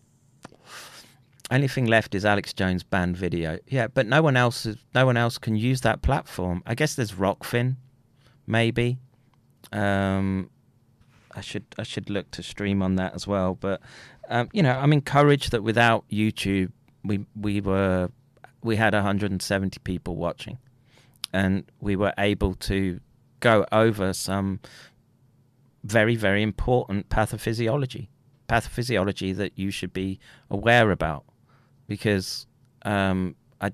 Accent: British